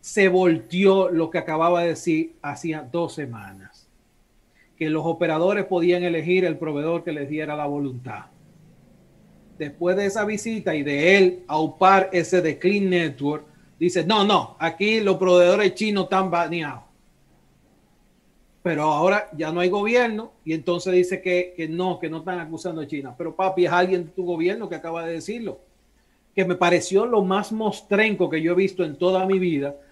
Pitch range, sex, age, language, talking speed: 160-190 Hz, male, 40-59, Spanish, 175 wpm